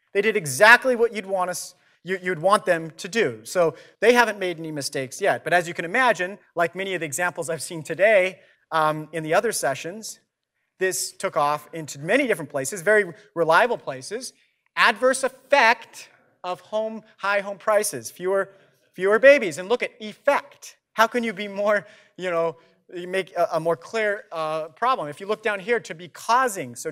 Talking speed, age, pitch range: 185 wpm, 40-59, 160-210 Hz